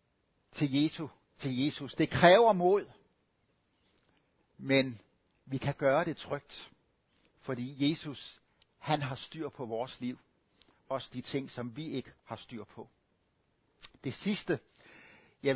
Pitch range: 130-165 Hz